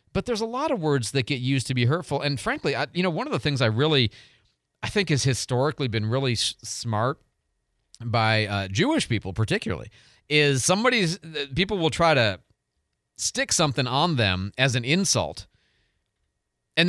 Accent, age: American, 40-59